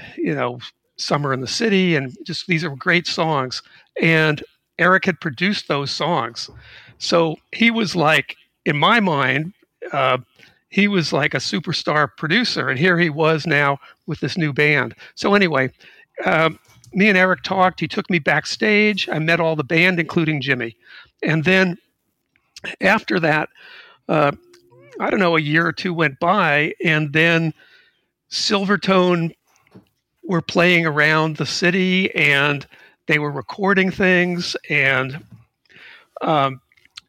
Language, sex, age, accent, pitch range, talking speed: English, male, 50-69, American, 150-185 Hz, 140 wpm